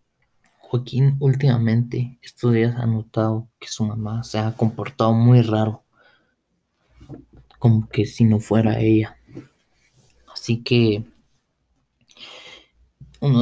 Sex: male